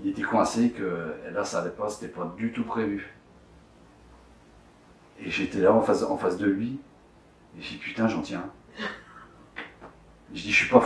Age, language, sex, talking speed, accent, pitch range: 40-59, French, male, 190 wpm, French, 90-115 Hz